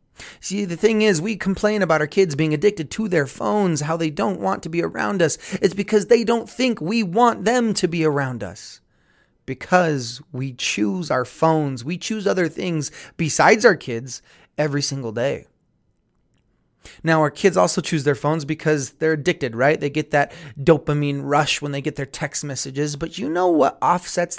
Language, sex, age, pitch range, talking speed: English, male, 30-49, 135-180 Hz, 185 wpm